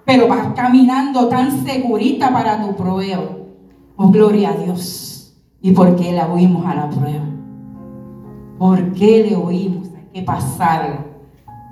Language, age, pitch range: Spanish, 40-59, 180-265 Hz